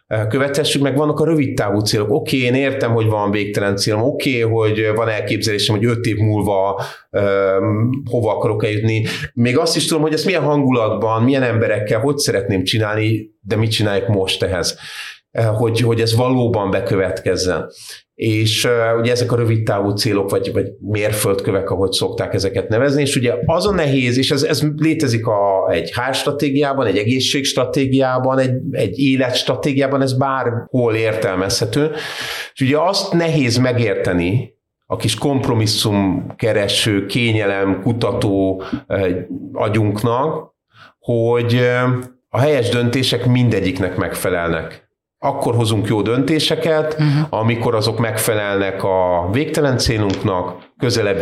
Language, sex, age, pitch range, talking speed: Hungarian, male, 30-49, 105-135 Hz, 130 wpm